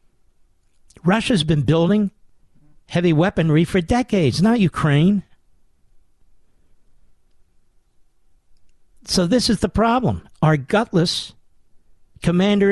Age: 50-69